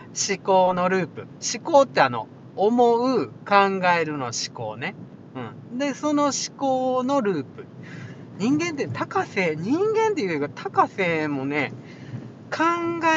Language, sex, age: Japanese, male, 40-59